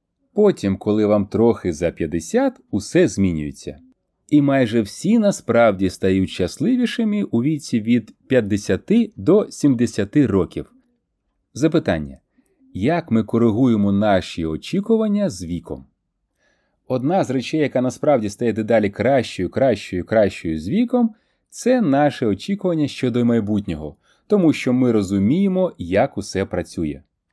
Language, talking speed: Ukrainian, 115 wpm